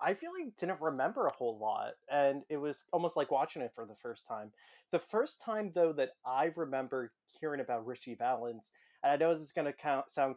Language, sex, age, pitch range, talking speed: English, male, 20-39, 125-155 Hz, 220 wpm